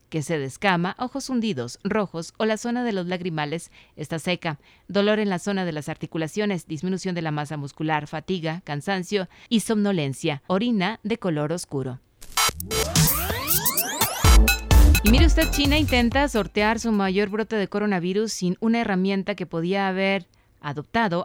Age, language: 30-49, Spanish